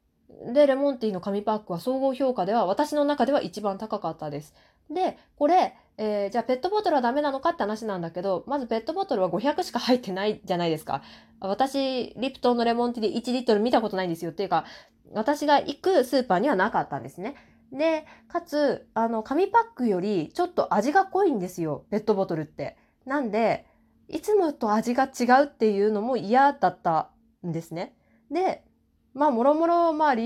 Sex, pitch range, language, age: female, 195-290 Hz, Japanese, 20-39